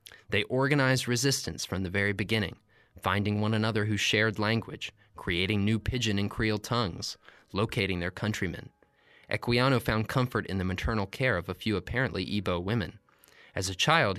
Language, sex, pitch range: English, male, 95-115 Hz